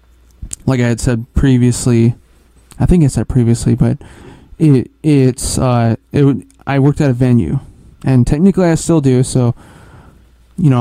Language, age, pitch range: English, 20-39, 105-130 Hz